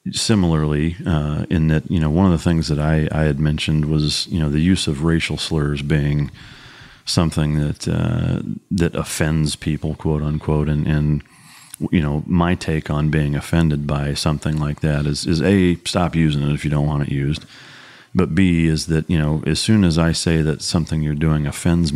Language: English